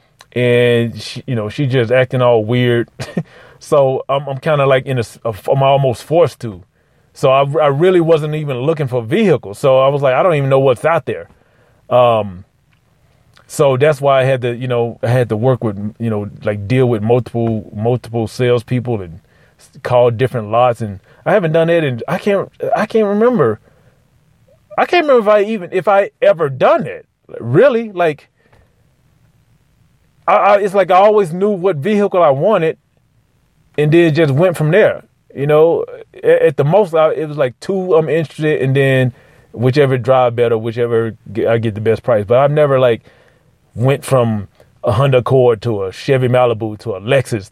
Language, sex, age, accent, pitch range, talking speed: English, male, 30-49, American, 120-160 Hz, 190 wpm